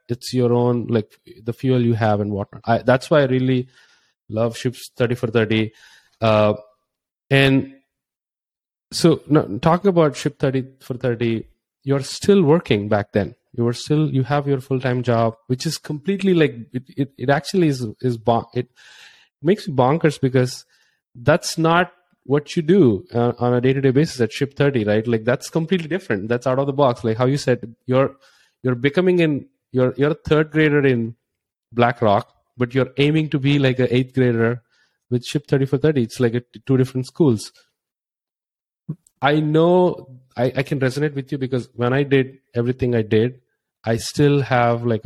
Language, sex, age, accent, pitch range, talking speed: English, male, 30-49, Indian, 115-140 Hz, 185 wpm